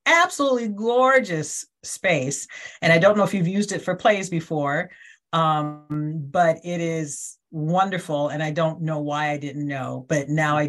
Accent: American